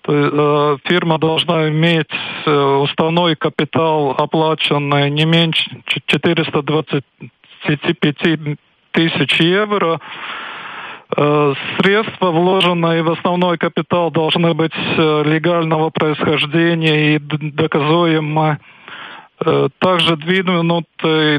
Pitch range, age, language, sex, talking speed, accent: 155-180 Hz, 40-59, Russian, male, 65 wpm, native